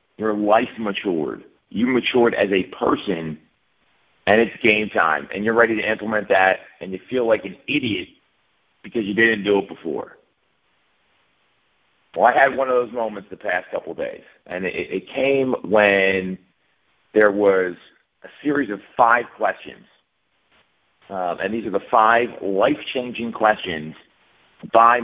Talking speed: 150 wpm